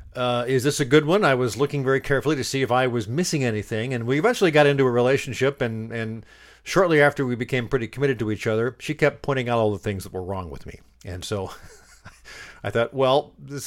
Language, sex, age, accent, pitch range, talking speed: English, male, 50-69, American, 110-145 Hz, 235 wpm